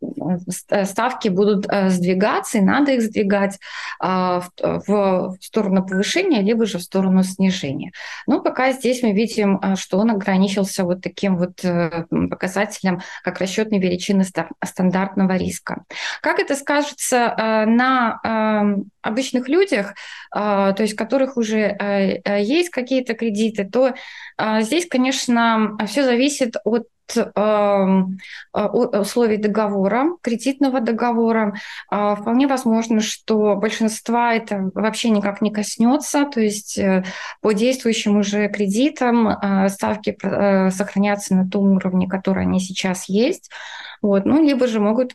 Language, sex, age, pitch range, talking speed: Russian, female, 20-39, 195-230 Hz, 115 wpm